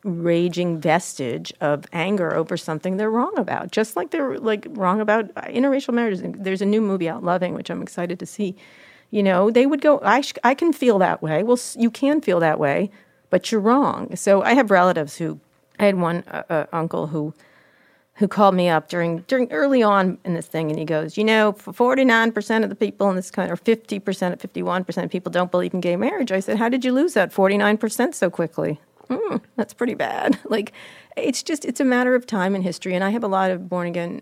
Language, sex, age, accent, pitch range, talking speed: English, female, 40-59, American, 170-220 Hz, 225 wpm